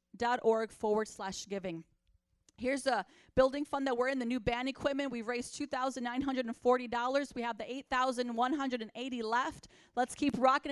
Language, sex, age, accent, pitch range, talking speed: English, female, 30-49, American, 235-280 Hz, 205 wpm